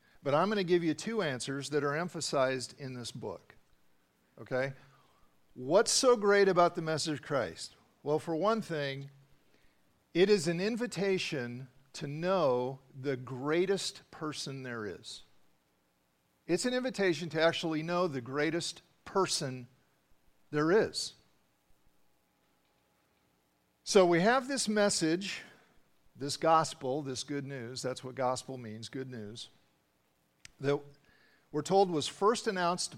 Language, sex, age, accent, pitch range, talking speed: English, male, 50-69, American, 130-180 Hz, 125 wpm